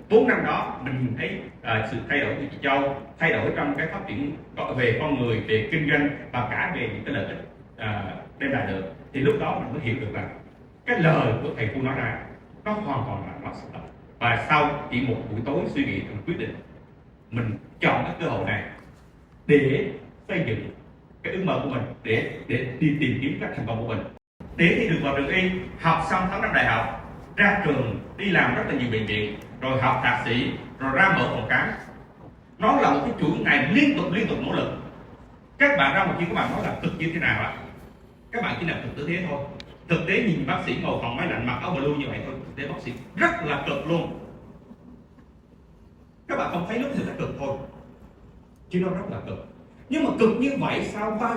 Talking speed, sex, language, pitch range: 230 wpm, male, Vietnamese, 120-185 Hz